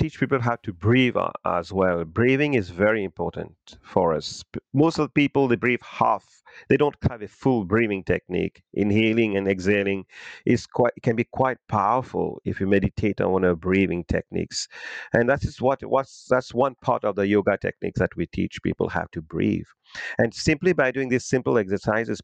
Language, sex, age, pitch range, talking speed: English, male, 40-59, 100-130 Hz, 190 wpm